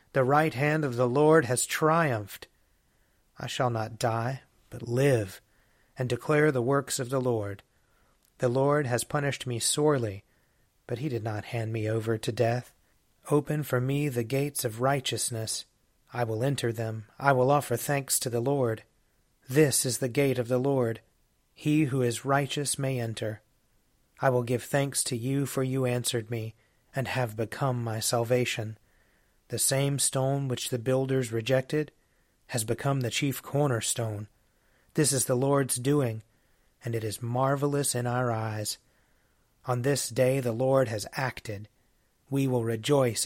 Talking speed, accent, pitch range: 160 wpm, American, 115-140 Hz